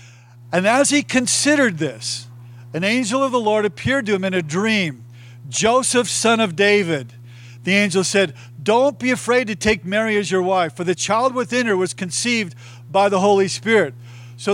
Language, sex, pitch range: English, male, 160-230 Hz